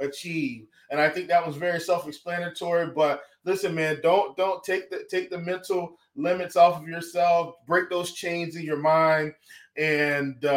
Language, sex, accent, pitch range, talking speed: English, male, American, 160-195 Hz, 165 wpm